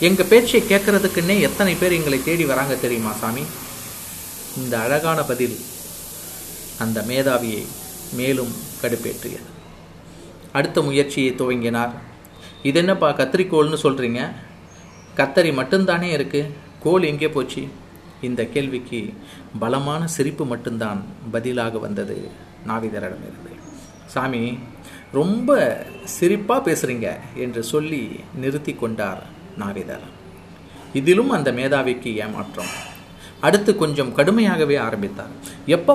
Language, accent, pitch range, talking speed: Tamil, native, 115-165 Hz, 90 wpm